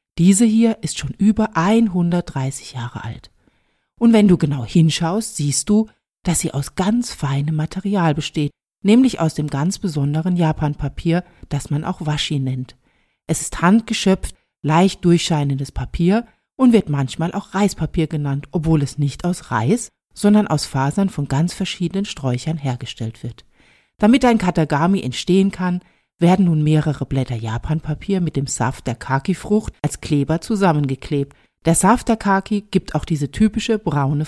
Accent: German